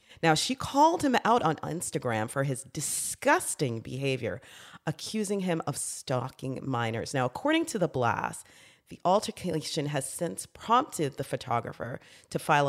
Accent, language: American, English